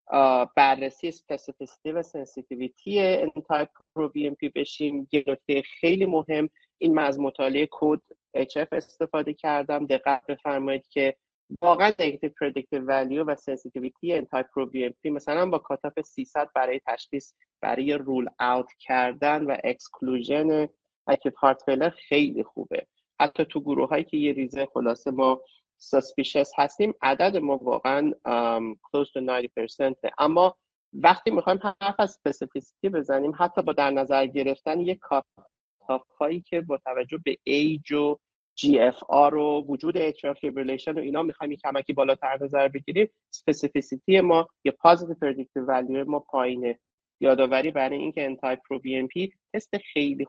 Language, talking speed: Persian, 140 wpm